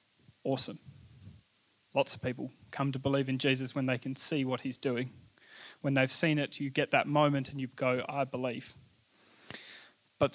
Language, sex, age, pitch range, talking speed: English, male, 20-39, 130-155 Hz, 175 wpm